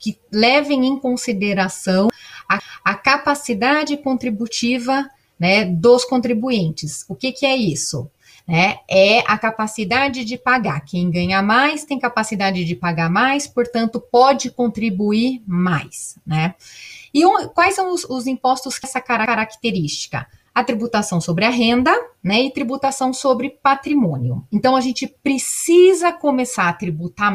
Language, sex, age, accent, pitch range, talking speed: Portuguese, female, 30-49, Brazilian, 190-275 Hz, 135 wpm